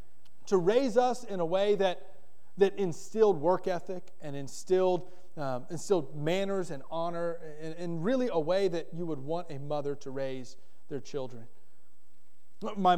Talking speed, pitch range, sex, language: 155 wpm, 155-210 Hz, male, English